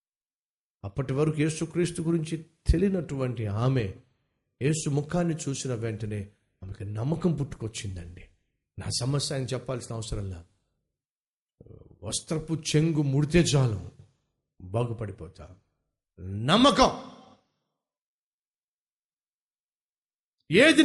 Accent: native